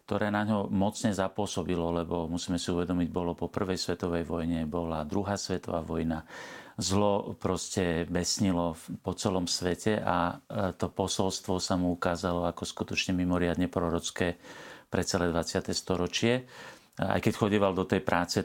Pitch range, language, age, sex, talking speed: 85-95 Hz, Slovak, 40-59, male, 145 wpm